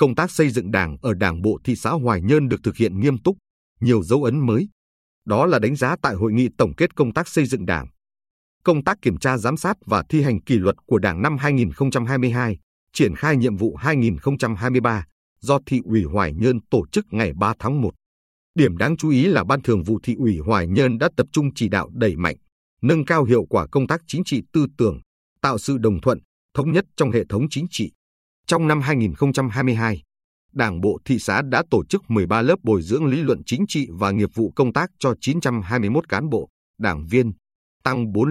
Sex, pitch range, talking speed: male, 105-140 Hz, 215 wpm